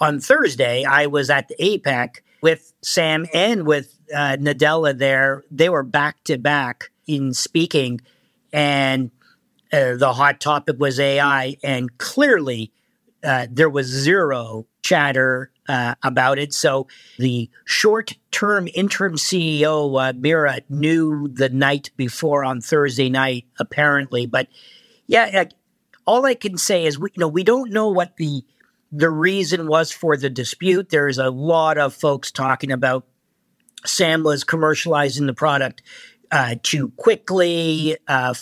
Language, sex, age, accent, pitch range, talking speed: English, male, 50-69, American, 135-165 Hz, 135 wpm